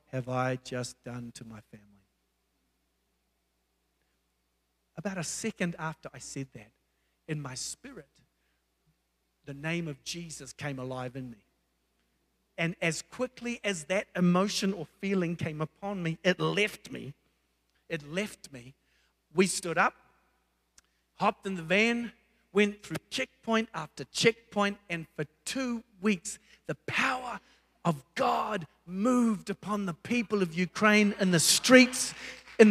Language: English